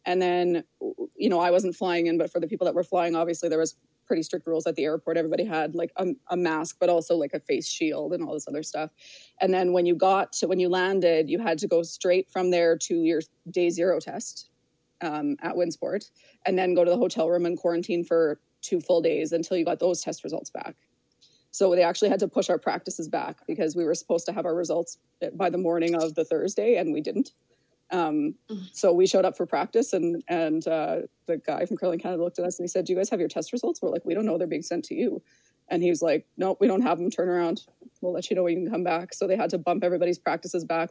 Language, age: English, 20-39